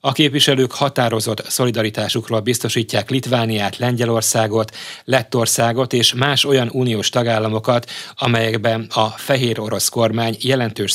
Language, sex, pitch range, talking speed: Hungarian, male, 110-140 Hz, 105 wpm